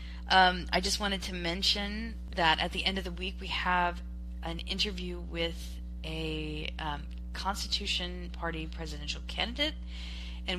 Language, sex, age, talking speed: English, female, 20-39, 140 wpm